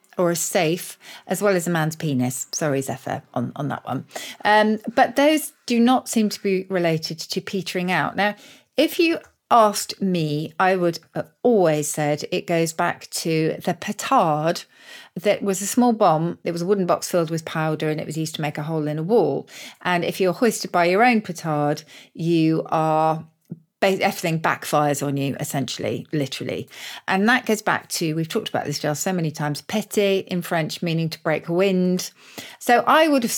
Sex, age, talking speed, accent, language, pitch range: female, 40-59, 190 wpm, British, English, 155-205 Hz